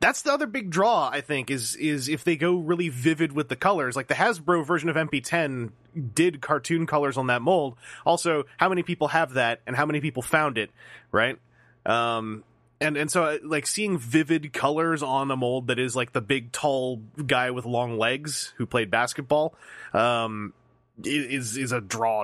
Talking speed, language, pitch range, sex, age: 190 wpm, English, 115-160 Hz, male, 30-49